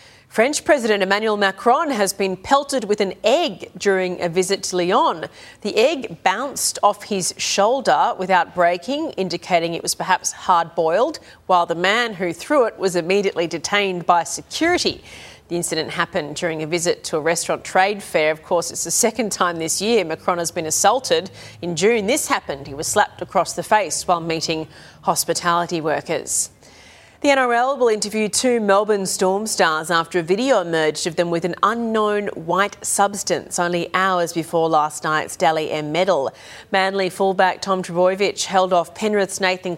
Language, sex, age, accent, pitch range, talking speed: English, female, 40-59, Australian, 165-205 Hz, 165 wpm